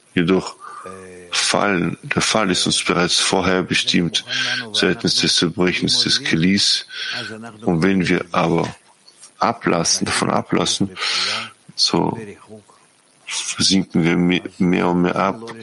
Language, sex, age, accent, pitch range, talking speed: German, male, 50-69, German, 85-100 Hz, 110 wpm